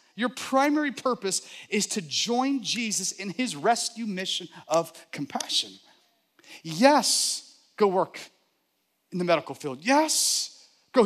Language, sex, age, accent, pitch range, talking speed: English, male, 40-59, American, 175-280 Hz, 120 wpm